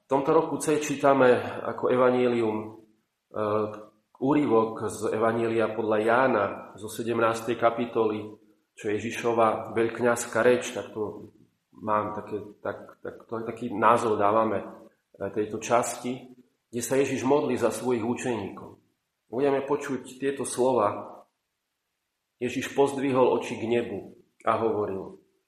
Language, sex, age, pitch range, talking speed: Slovak, male, 40-59, 110-125 Hz, 120 wpm